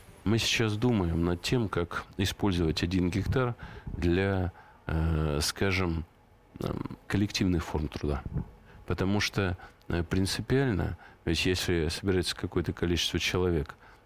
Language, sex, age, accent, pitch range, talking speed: Russian, male, 40-59, native, 85-95 Hz, 95 wpm